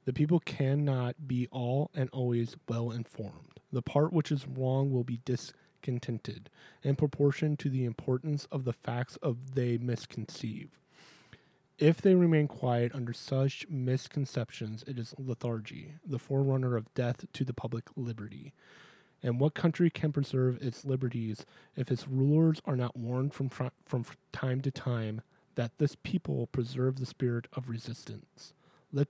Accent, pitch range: American, 120-145 Hz